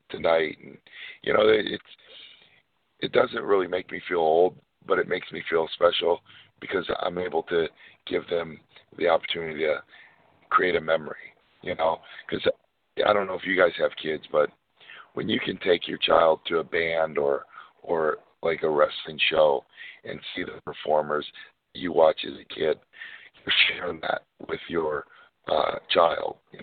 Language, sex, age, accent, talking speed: English, male, 50-69, American, 165 wpm